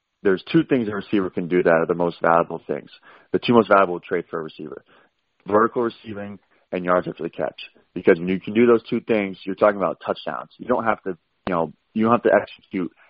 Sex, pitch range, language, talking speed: male, 85-100 Hz, English, 235 wpm